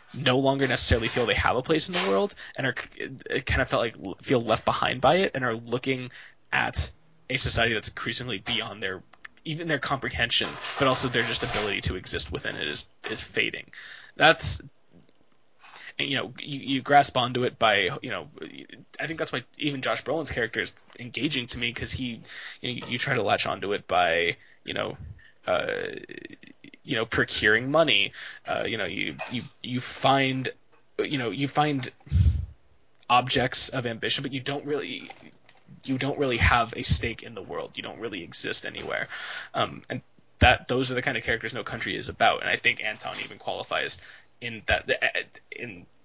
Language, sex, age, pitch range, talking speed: English, male, 20-39, 115-140 Hz, 180 wpm